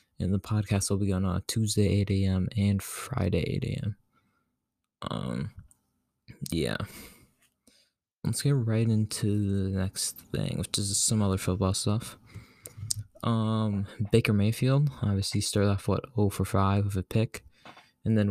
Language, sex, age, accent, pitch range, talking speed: English, male, 20-39, American, 95-110 Hz, 145 wpm